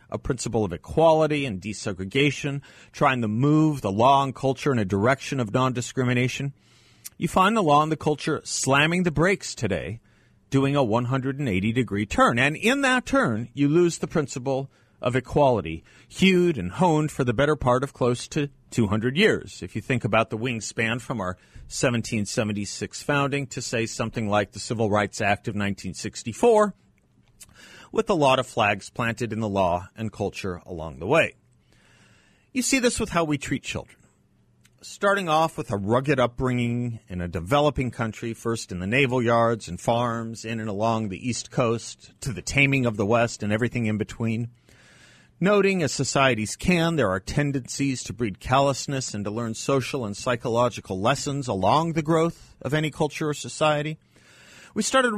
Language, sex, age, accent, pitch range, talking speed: English, male, 40-59, American, 110-150 Hz, 170 wpm